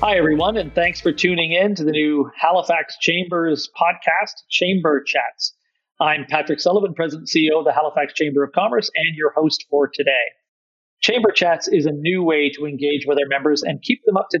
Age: 40-59